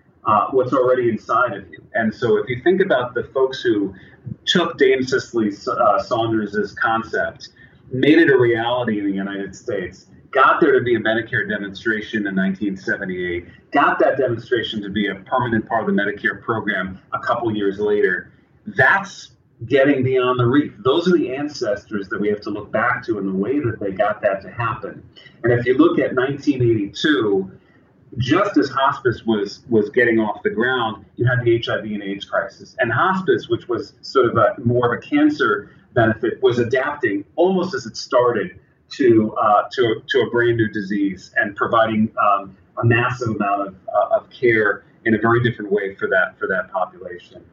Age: 30-49